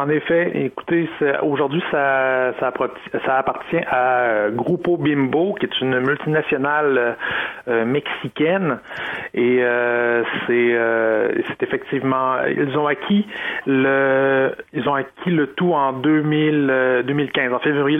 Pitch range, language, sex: 125-150 Hz, French, male